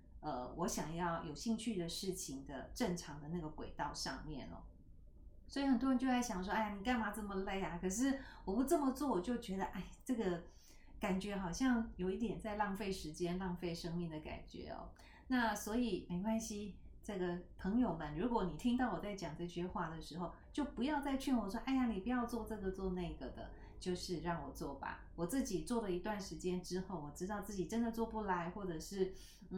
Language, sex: Chinese, female